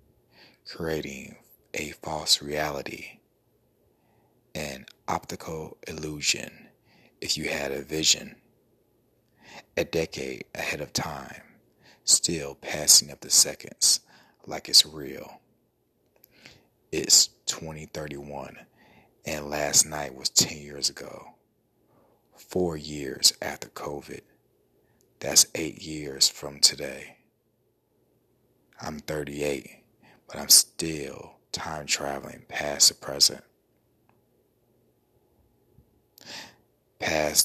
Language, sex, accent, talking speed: English, male, American, 85 wpm